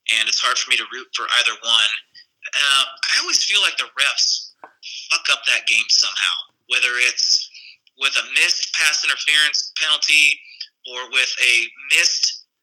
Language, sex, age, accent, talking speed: English, male, 30-49, American, 160 wpm